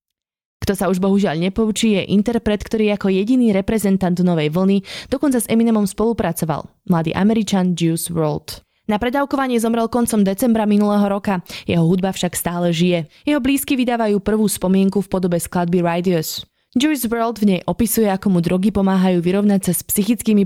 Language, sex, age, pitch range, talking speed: Slovak, female, 20-39, 175-225 Hz, 160 wpm